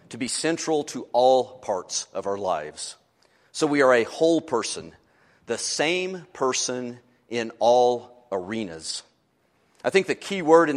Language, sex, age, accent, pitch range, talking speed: English, male, 40-59, American, 115-150 Hz, 150 wpm